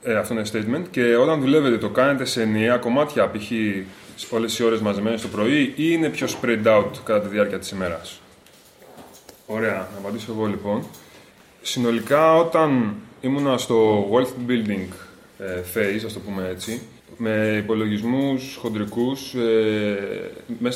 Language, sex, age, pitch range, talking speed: Greek, male, 20-39, 105-130 Hz, 145 wpm